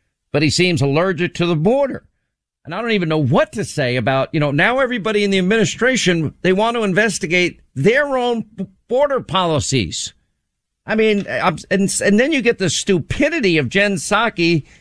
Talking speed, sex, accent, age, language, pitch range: 175 wpm, male, American, 50-69, English, 160-225 Hz